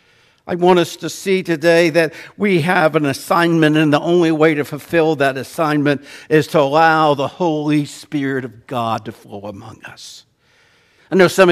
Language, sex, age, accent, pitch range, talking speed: English, male, 60-79, American, 145-190 Hz, 175 wpm